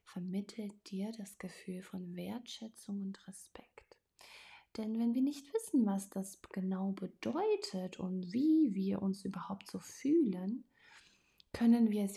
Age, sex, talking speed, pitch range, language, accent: 30-49, female, 135 wpm, 190-240 Hz, German, German